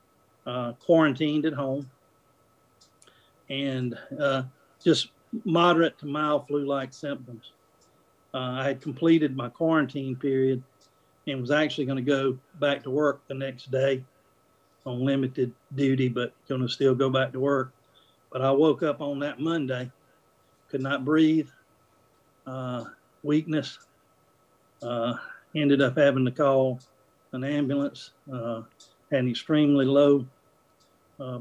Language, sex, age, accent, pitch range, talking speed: English, male, 50-69, American, 125-145 Hz, 130 wpm